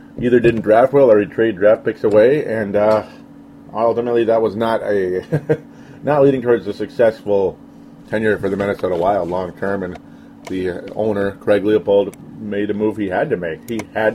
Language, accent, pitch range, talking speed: English, American, 100-115 Hz, 185 wpm